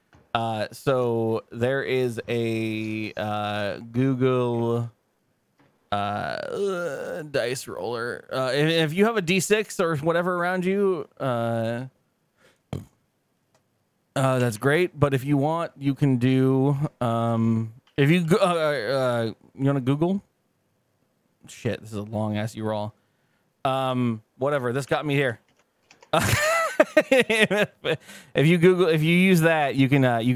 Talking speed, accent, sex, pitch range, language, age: 130 wpm, American, male, 110-160 Hz, English, 20-39